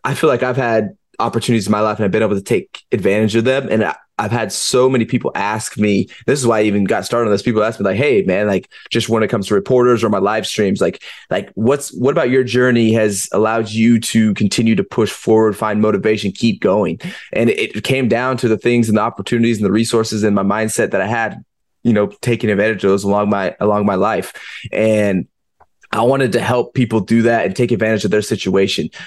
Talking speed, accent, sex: 240 wpm, American, male